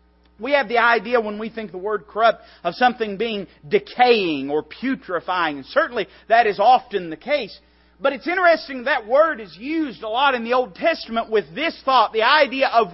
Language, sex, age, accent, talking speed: English, male, 40-59, American, 195 wpm